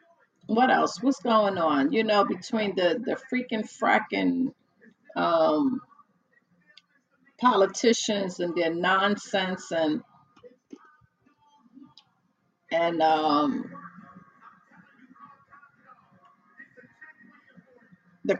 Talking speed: 70 wpm